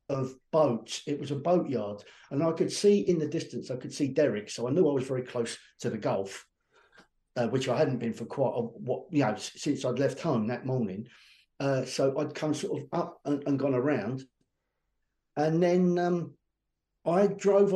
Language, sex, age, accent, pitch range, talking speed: English, male, 50-69, British, 130-175 Hz, 205 wpm